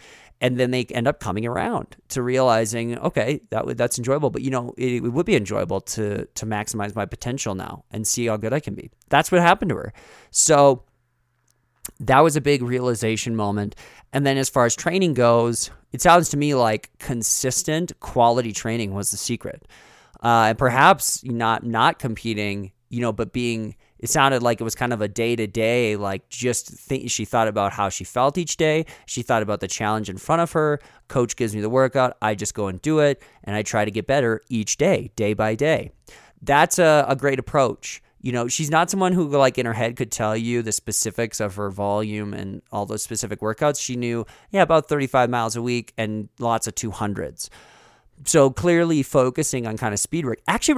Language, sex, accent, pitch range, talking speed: English, male, American, 105-130 Hz, 205 wpm